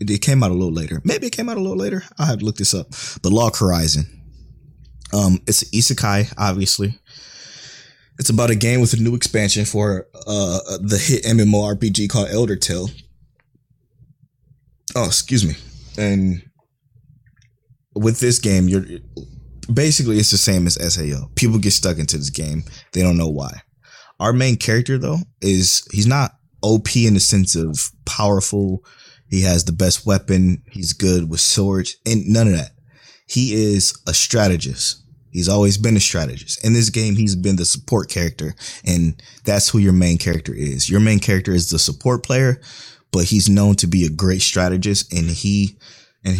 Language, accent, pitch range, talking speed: English, American, 90-120 Hz, 175 wpm